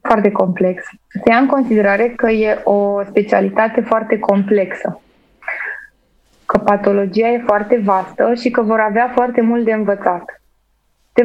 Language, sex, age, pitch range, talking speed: Romanian, female, 20-39, 205-245 Hz, 140 wpm